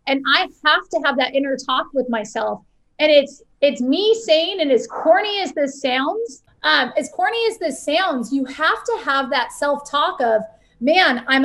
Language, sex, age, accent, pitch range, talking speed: English, female, 30-49, American, 265-335 Hz, 190 wpm